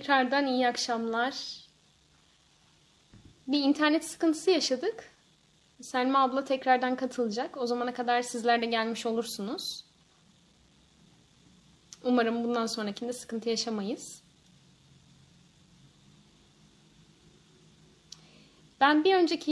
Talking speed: 80 wpm